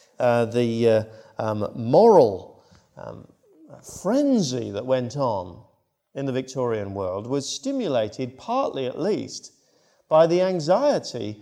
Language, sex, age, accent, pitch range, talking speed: English, male, 40-59, British, 120-160 Hz, 115 wpm